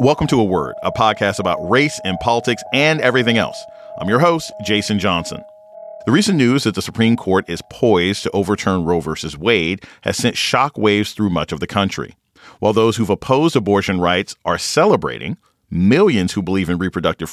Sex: male